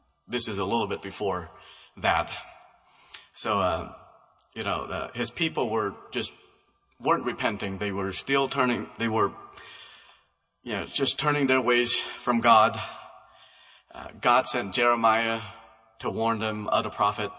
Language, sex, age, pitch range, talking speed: English, male, 30-49, 100-115 Hz, 145 wpm